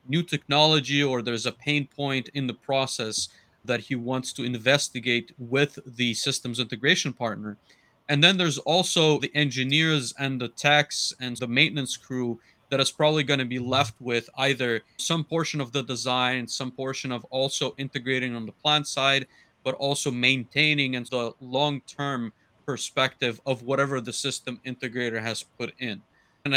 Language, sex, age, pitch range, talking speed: English, male, 30-49, 120-145 Hz, 165 wpm